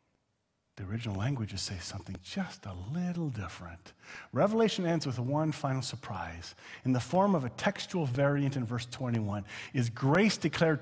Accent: American